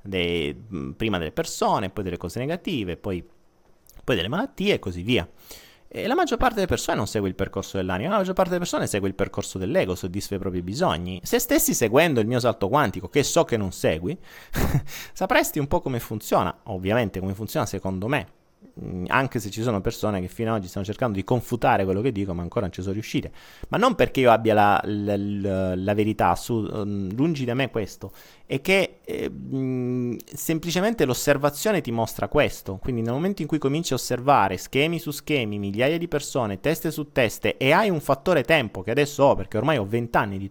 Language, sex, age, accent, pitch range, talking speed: Italian, male, 30-49, native, 100-150 Hz, 205 wpm